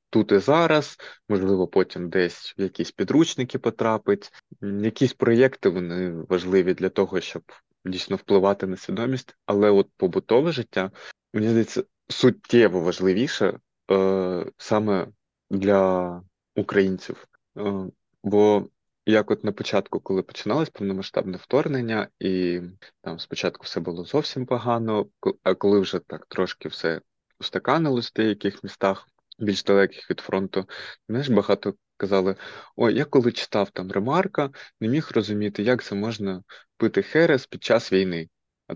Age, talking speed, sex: 20-39, 130 wpm, male